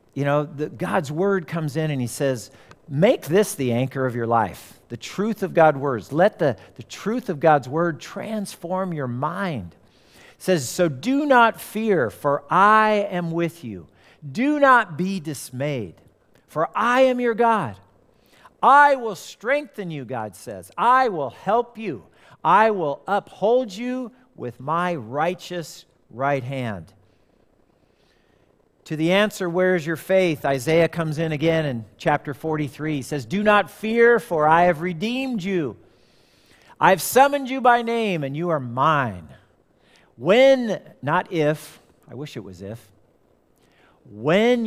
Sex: male